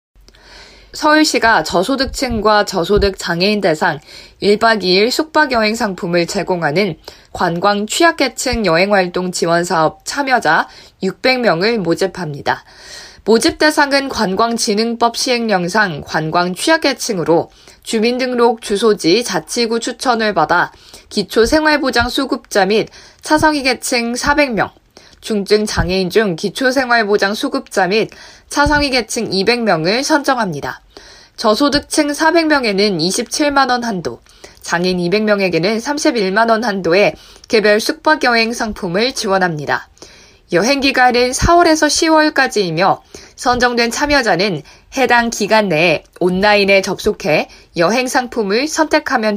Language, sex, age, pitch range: Korean, female, 20-39, 190-265 Hz